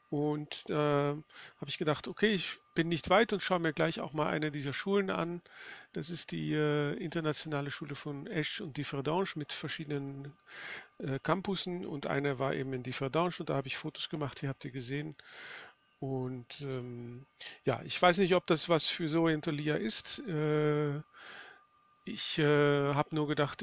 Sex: male